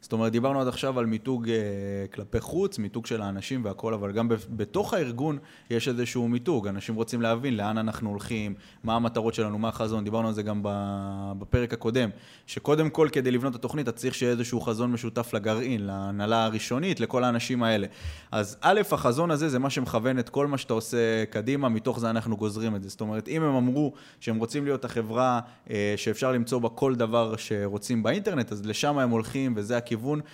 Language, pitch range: Hebrew, 105-130 Hz